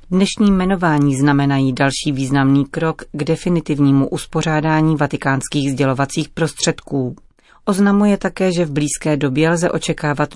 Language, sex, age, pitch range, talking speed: Czech, female, 30-49, 140-165 Hz, 115 wpm